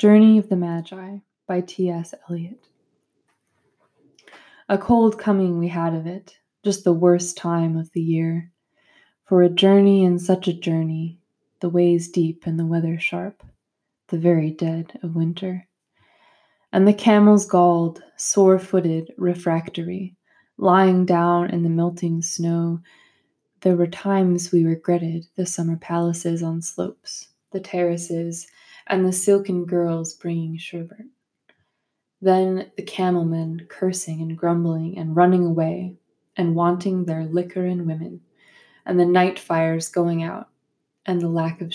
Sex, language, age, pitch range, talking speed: female, English, 20-39, 170-190 Hz, 135 wpm